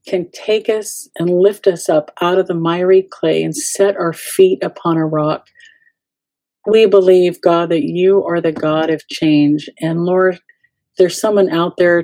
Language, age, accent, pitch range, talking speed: English, 50-69, American, 165-195 Hz, 175 wpm